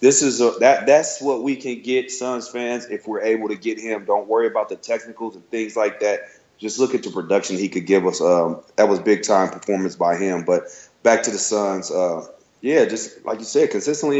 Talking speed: 230 wpm